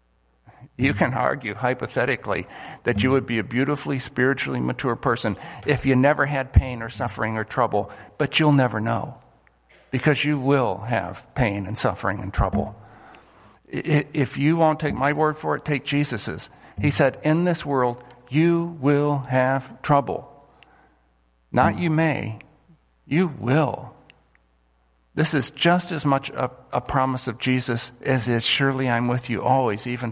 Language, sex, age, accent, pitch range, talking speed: English, male, 50-69, American, 115-150 Hz, 155 wpm